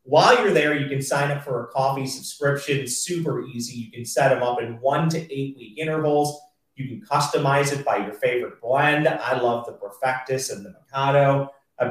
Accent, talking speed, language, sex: American, 200 wpm, English, male